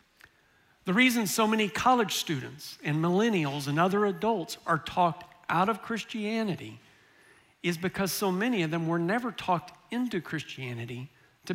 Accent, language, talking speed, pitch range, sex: American, English, 145 wpm, 160-205 Hz, male